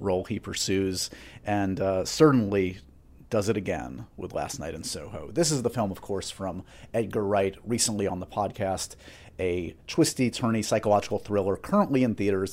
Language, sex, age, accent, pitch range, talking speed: English, male, 30-49, American, 95-125 Hz, 170 wpm